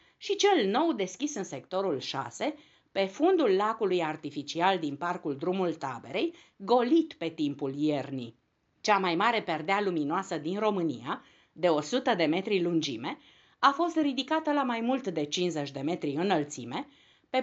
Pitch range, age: 155-245 Hz, 50-69